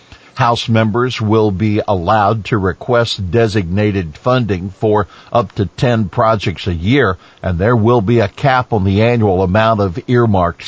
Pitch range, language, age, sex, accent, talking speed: 100-120 Hz, English, 60-79, male, American, 155 wpm